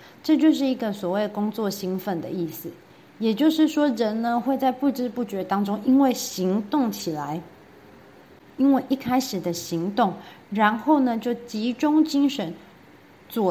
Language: Chinese